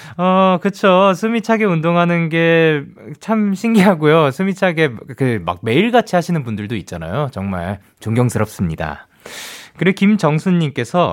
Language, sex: Korean, male